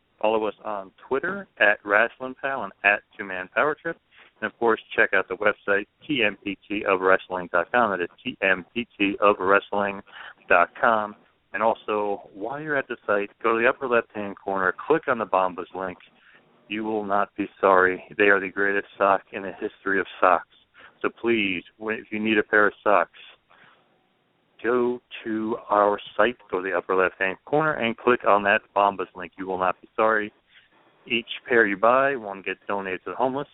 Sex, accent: male, American